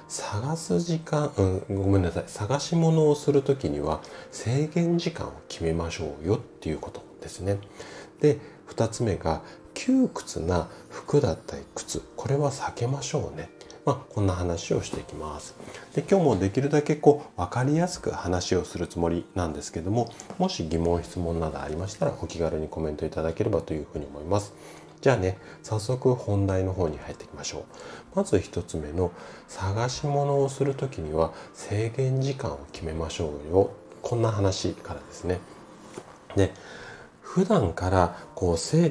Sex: male